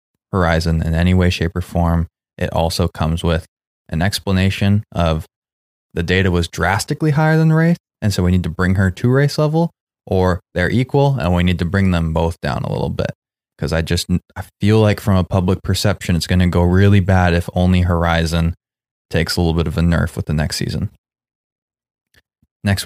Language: English